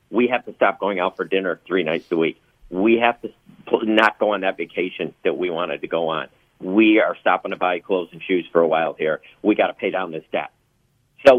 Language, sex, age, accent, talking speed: English, male, 50-69, American, 240 wpm